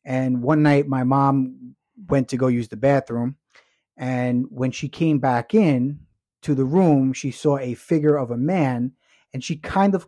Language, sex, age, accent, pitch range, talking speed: English, male, 30-49, American, 125-150 Hz, 185 wpm